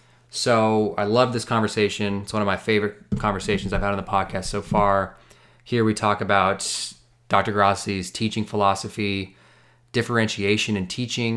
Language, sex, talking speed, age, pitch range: English, male, 155 wpm, 20-39, 100-115 Hz